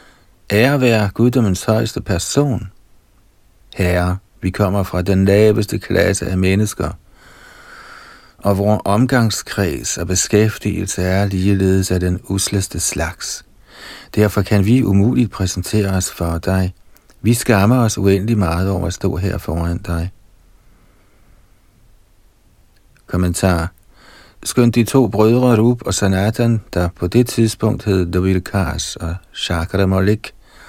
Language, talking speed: Danish, 120 wpm